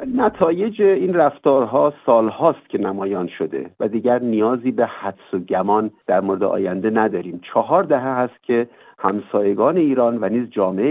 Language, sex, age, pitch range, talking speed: Persian, male, 50-69, 105-140 Hz, 150 wpm